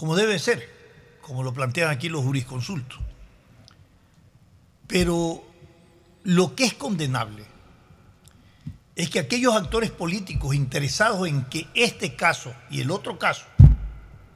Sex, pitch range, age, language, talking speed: male, 135-190 Hz, 60-79, Spanish, 115 wpm